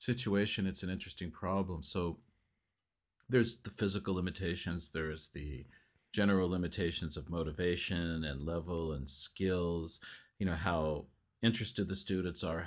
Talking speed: 130 wpm